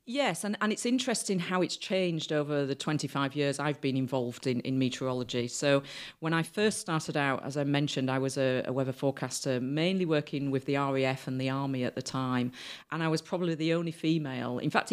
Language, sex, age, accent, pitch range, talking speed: English, female, 40-59, British, 130-160 Hz, 215 wpm